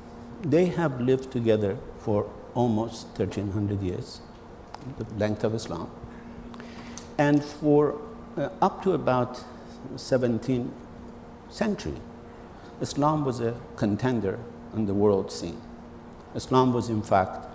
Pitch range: 105-130 Hz